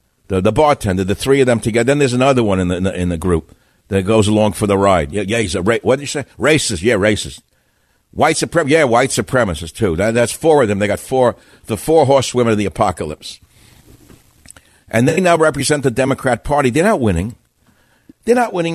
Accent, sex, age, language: American, male, 60-79, English